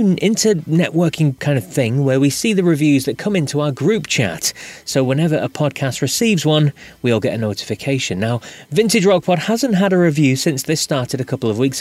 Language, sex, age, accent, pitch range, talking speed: English, male, 30-49, British, 115-170 Hz, 205 wpm